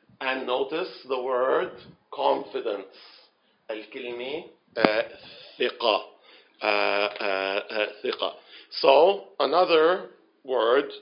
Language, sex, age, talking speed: English, male, 50-69, 55 wpm